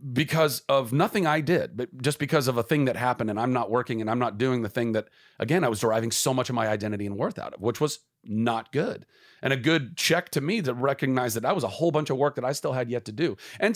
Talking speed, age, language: 285 wpm, 40-59, English